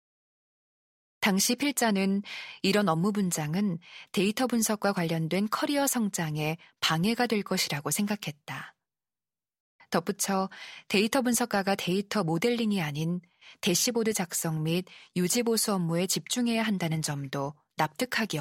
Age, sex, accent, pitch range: 20-39, female, native, 165-225 Hz